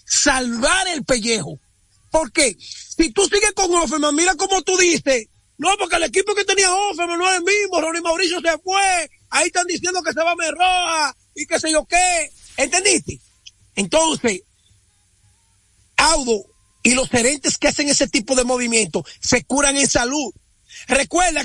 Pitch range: 230-315 Hz